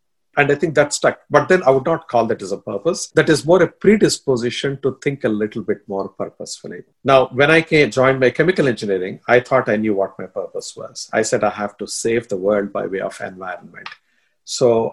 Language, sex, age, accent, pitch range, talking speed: English, male, 50-69, Indian, 110-155 Hz, 220 wpm